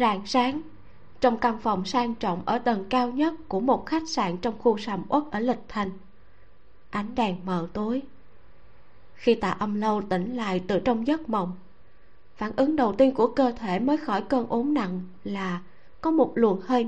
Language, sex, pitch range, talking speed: Vietnamese, female, 195-260 Hz, 190 wpm